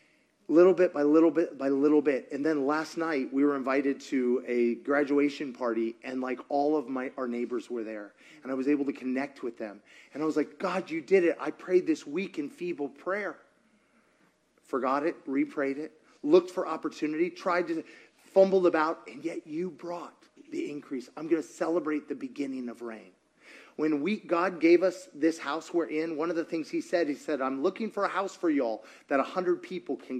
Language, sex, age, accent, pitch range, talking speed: English, male, 30-49, American, 140-205 Hz, 205 wpm